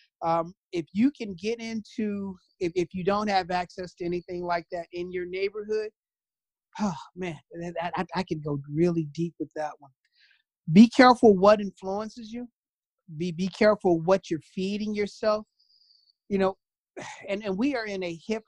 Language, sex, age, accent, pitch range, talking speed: English, male, 30-49, American, 175-225 Hz, 170 wpm